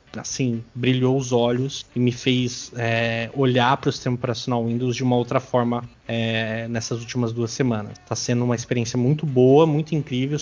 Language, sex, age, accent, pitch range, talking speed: Portuguese, male, 20-39, Brazilian, 120-140 Hz, 165 wpm